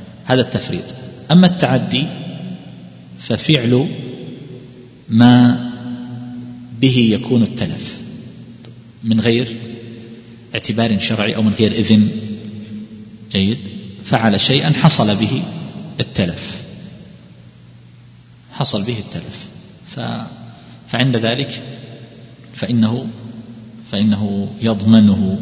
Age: 40-59